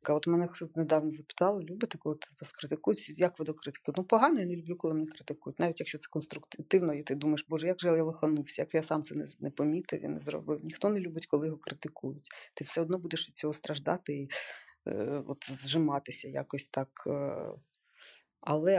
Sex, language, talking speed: female, Ukrainian, 200 wpm